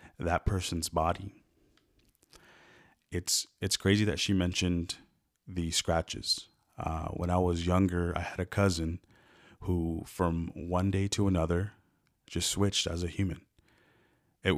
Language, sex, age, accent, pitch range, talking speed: English, male, 30-49, American, 85-95 Hz, 130 wpm